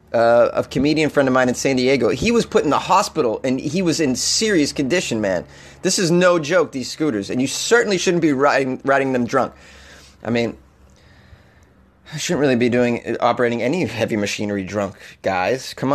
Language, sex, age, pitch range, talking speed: English, male, 30-49, 120-160 Hz, 190 wpm